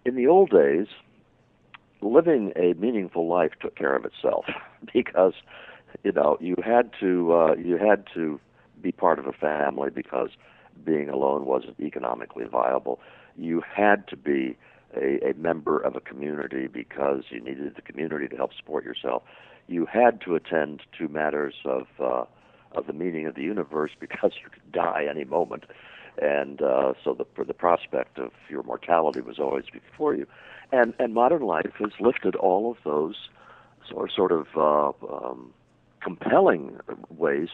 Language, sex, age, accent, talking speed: English, male, 60-79, American, 160 wpm